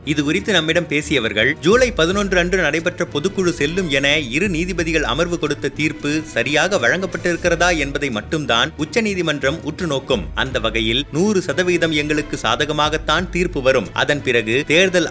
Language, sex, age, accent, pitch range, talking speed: Tamil, male, 30-49, native, 145-180 Hz, 130 wpm